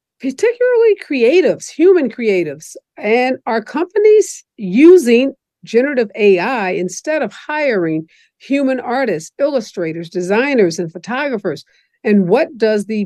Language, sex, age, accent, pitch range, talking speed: English, female, 50-69, American, 185-255 Hz, 105 wpm